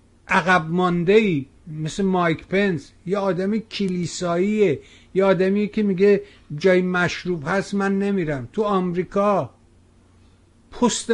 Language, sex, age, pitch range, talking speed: Persian, male, 60-79, 130-195 Hz, 115 wpm